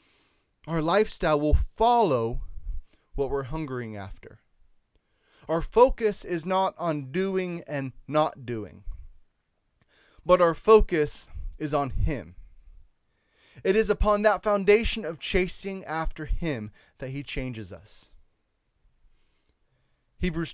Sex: male